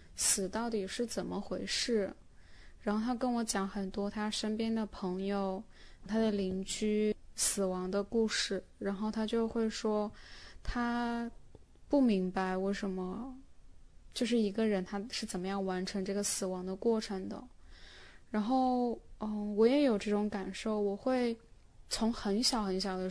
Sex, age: female, 10-29